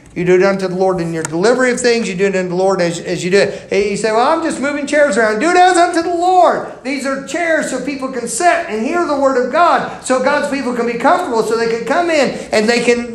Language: English